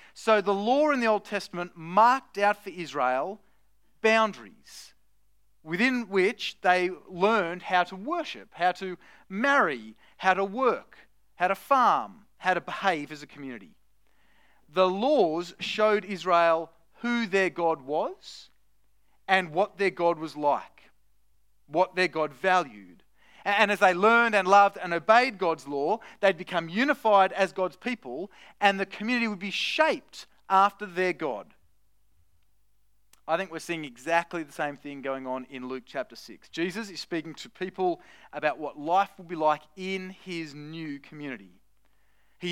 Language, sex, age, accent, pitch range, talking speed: English, male, 30-49, Australian, 155-205 Hz, 150 wpm